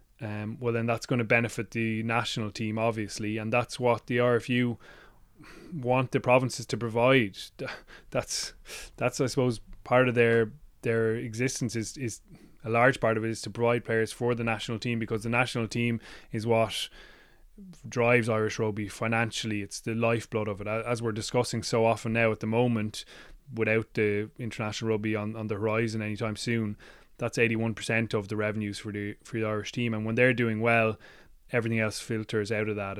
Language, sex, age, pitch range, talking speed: English, male, 20-39, 110-120 Hz, 185 wpm